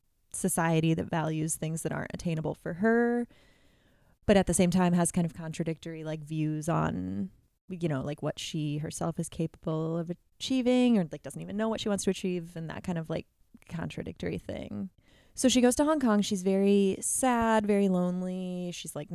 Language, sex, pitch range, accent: English, female, 165-200 Hz, American